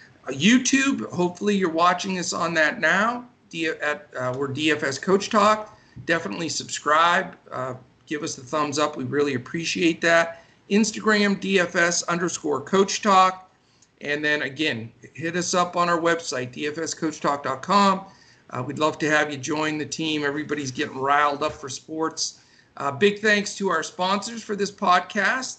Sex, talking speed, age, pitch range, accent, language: male, 150 wpm, 50-69, 150-185 Hz, American, English